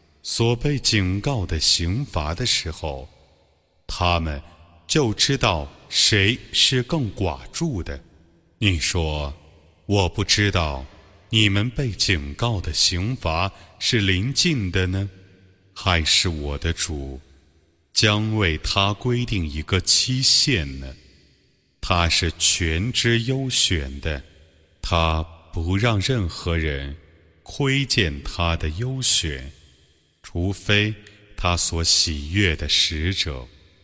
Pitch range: 80-105 Hz